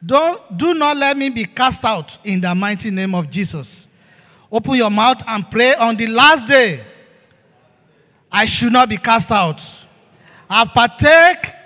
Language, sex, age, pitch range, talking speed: English, male, 40-59, 180-255 Hz, 155 wpm